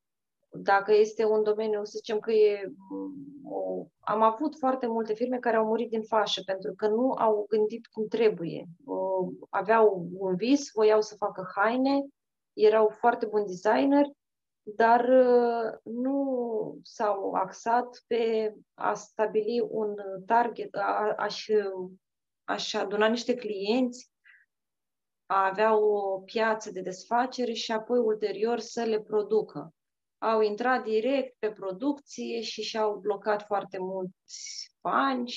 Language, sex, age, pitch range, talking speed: Romanian, female, 20-39, 205-235 Hz, 125 wpm